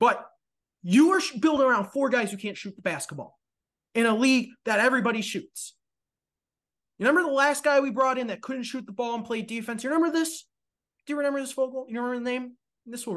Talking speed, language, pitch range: 220 wpm, English, 215-285 Hz